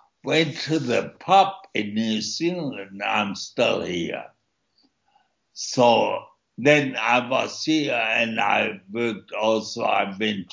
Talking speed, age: 120 wpm, 60-79